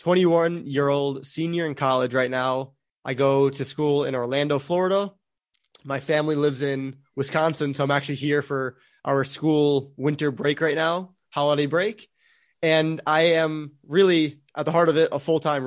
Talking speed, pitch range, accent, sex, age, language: 160 wpm, 140-170 Hz, American, male, 20-39, English